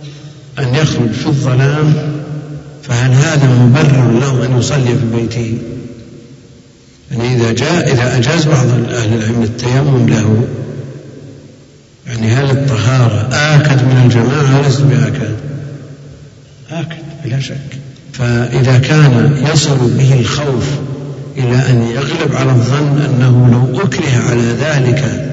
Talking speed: 115 wpm